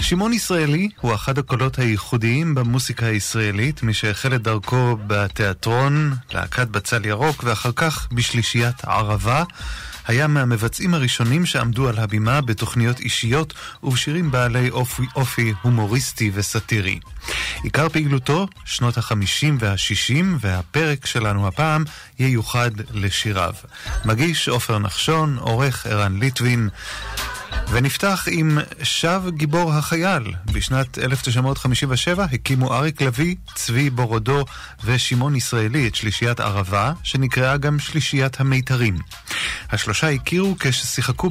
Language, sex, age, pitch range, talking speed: Hebrew, male, 30-49, 110-140 Hz, 110 wpm